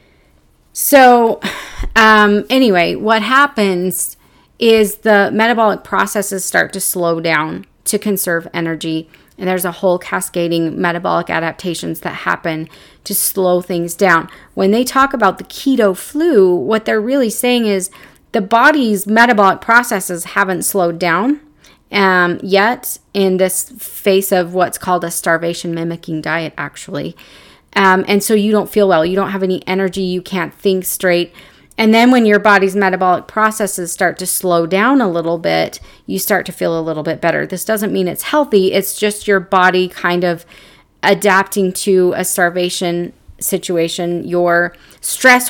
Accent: American